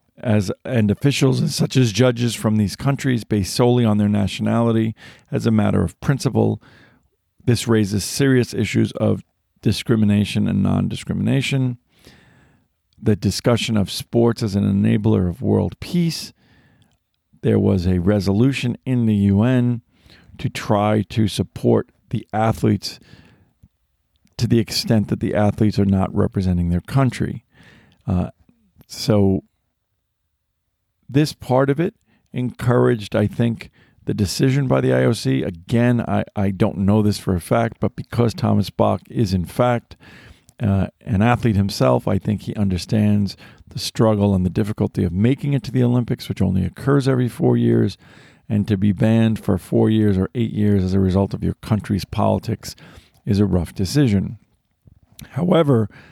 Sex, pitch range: male, 100-120 Hz